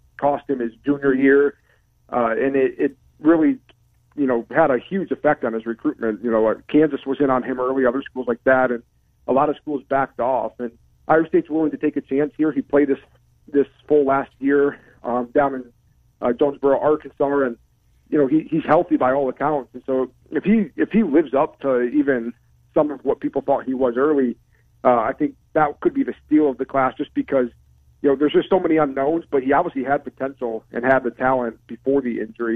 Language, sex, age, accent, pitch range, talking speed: English, male, 40-59, American, 125-150 Hz, 215 wpm